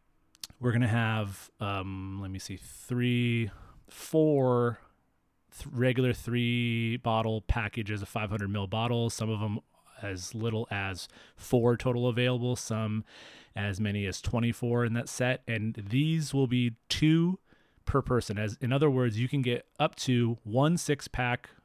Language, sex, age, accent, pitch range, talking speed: English, male, 30-49, American, 105-125 Hz, 155 wpm